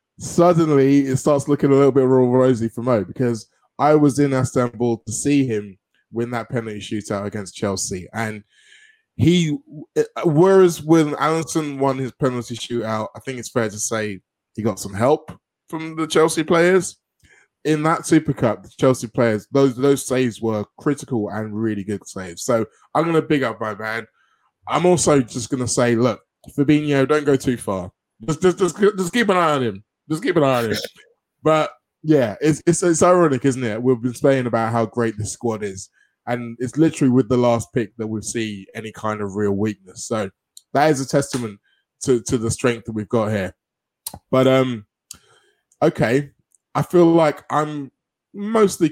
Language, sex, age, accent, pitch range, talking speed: English, male, 20-39, British, 115-155 Hz, 185 wpm